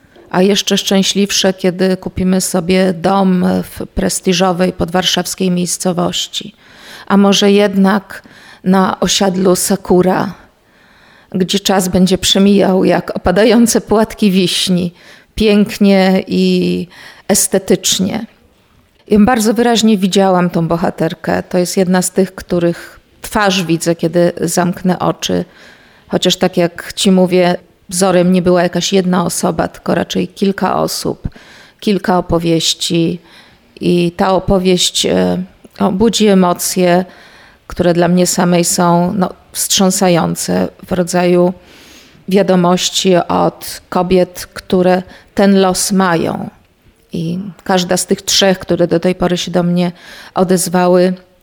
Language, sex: Polish, female